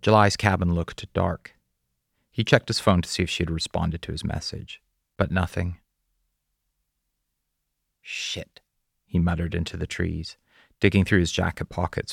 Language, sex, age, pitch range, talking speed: English, male, 30-49, 80-95 Hz, 150 wpm